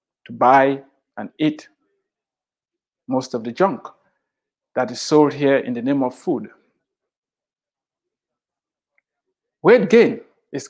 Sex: male